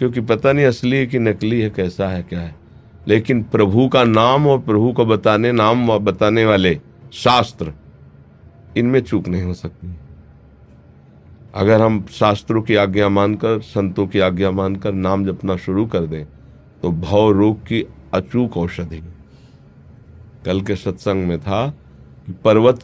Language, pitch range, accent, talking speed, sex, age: Hindi, 90-110 Hz, native, 150 wpm, male, 50-69